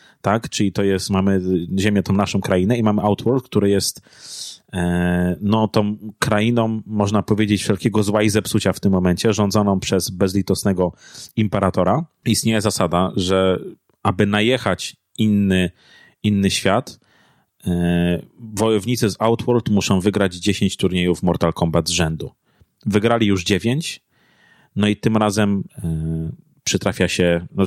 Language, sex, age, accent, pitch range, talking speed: Polish, male, 30-49, native, 90-105 Hz, 135 wpm